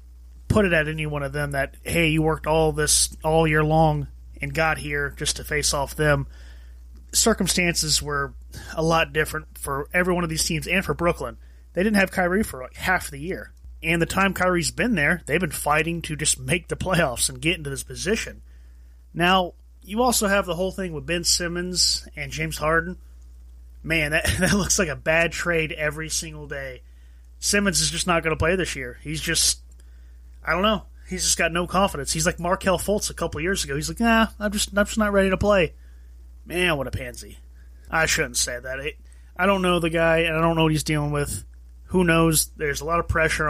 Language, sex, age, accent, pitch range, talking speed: English, male, 30-49, American, 130-175 Hz, 215 wpm